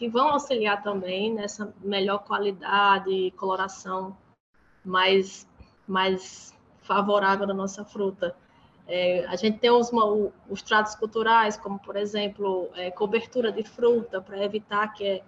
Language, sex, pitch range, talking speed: Portuguese, female, 195-225 Hz, 130 wpm